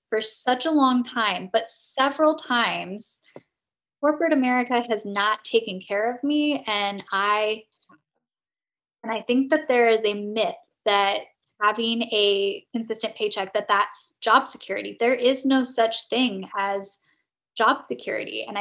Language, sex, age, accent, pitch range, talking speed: English, female, 10-29, American, 200-250 Hz, 140 wpm